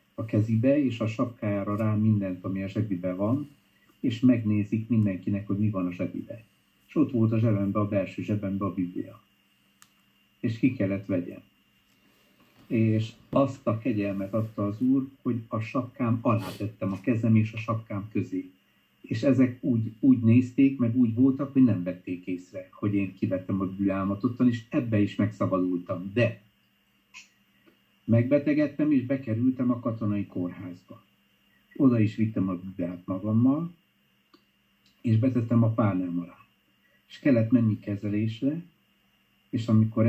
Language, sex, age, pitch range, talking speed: Hungarian, male, 50-69, 95-125 Hz, 140 wpm